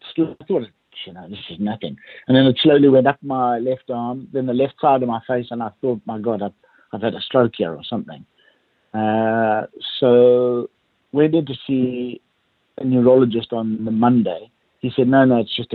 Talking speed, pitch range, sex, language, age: 200 wpm, 115-130 Hz, male, English, 60-79